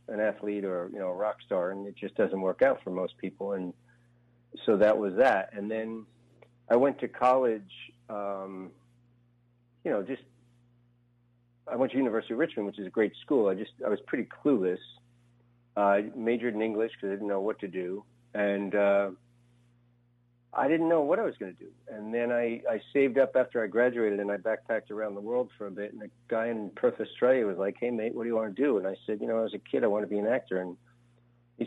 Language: English